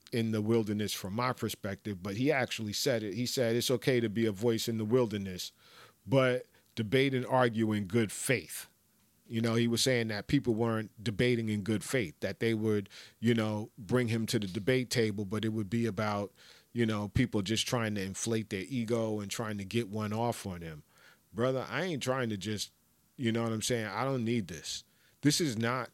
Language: English